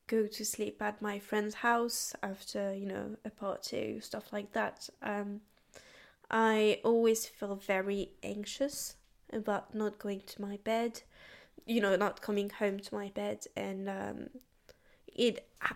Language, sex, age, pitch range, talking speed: English, female, 10-29, 200-225 Hz, 145 wpm